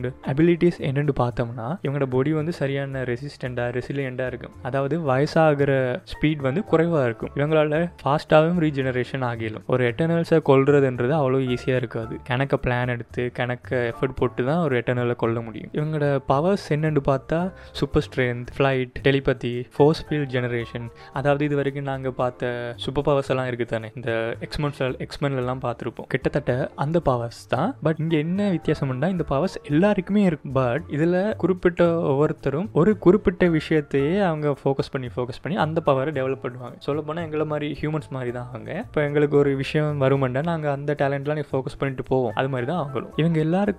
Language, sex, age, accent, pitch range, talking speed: Tamil, male, 20-39, native, 130-155 Hz, 135 wpm